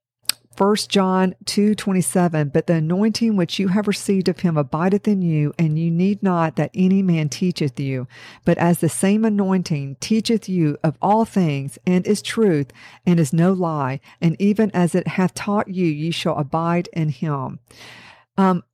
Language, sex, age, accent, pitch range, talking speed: English, female, 50-69, American, 155-195 Hz, 175 wpm